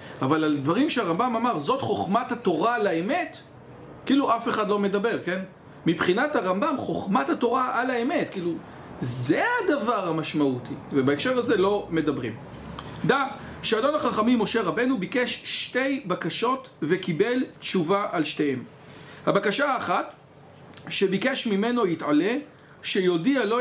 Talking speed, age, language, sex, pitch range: 125 wpm, 40-59, English, male, 170-245 Hz